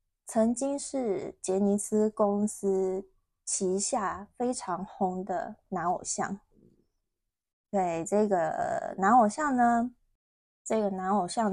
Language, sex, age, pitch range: Chinese, female, 20-39, 180-225 Hz